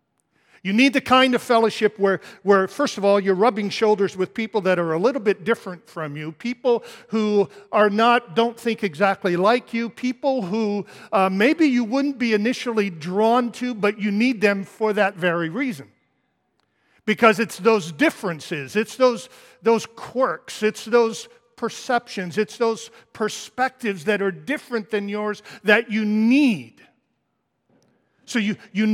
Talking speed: 160 wpm